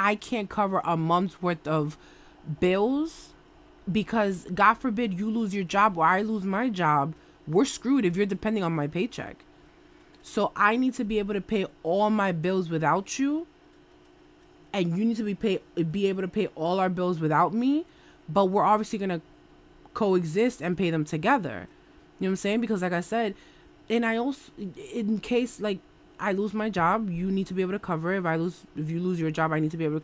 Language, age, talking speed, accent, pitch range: English, 20-39, 215 wpm, American, 160-210 Hz